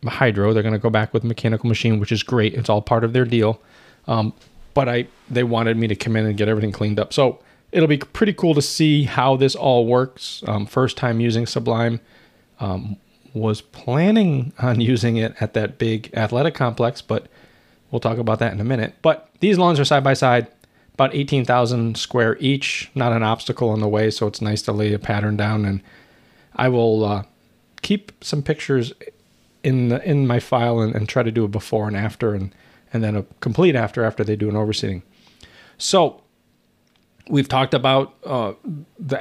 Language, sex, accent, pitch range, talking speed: English, male, American, 110-130 Hz, 200 wpm